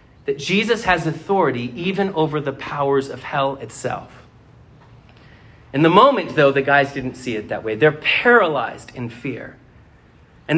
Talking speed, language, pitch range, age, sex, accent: 155 wpm, English, 130-190 Hz, 30-49, male, American